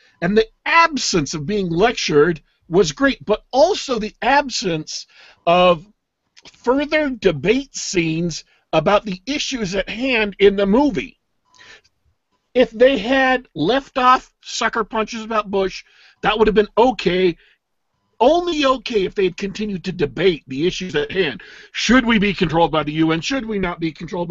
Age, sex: 50-69, male